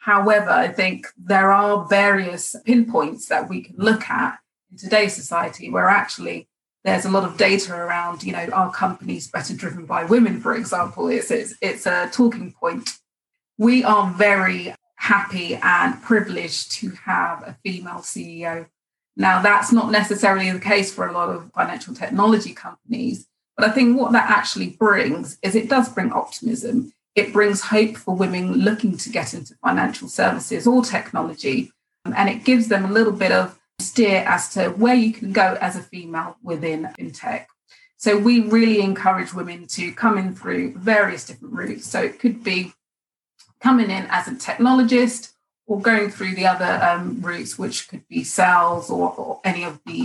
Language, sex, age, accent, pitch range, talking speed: English, female, 30-49, British, 185-230 Hz, 175 wpm